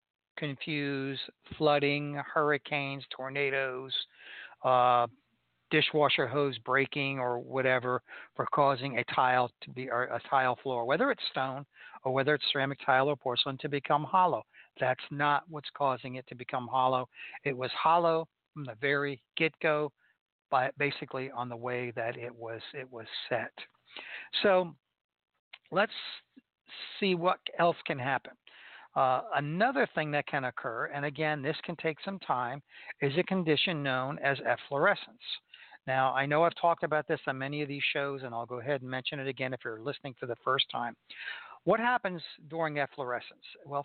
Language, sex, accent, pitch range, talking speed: English, male, American, 130-155 Hz, 160 wpm